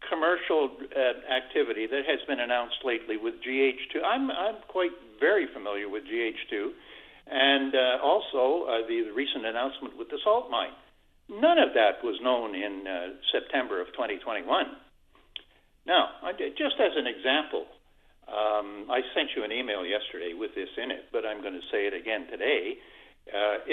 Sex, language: male, English